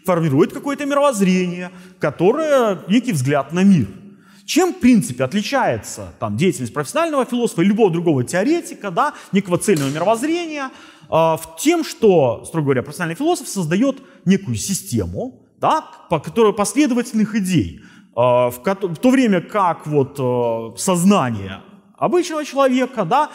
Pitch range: 150-240 Hz